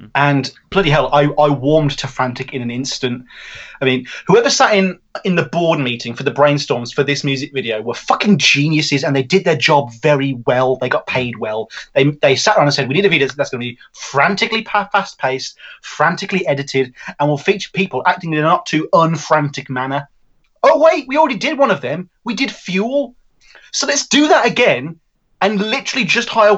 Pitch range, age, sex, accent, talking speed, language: 135-185 Hz, 30-49, male, British, 205 wpm, English